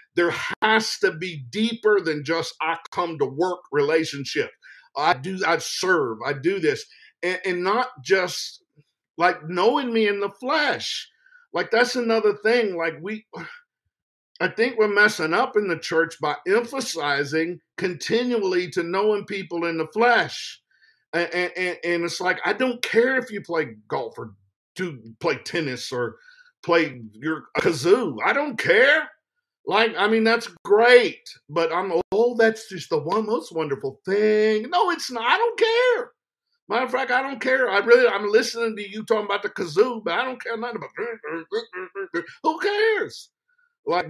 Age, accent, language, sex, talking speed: 50-69, American, English, male, 165 wpm